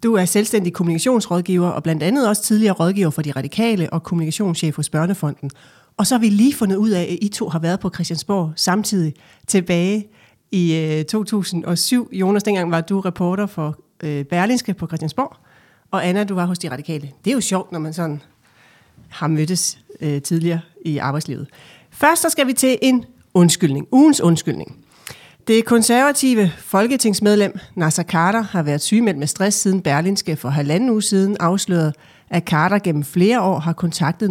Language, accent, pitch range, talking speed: Danish, native, 155-205 Hz, 170 wpm